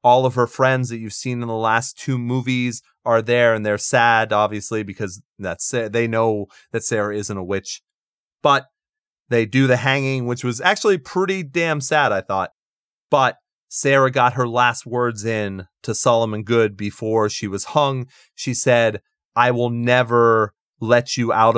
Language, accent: English, American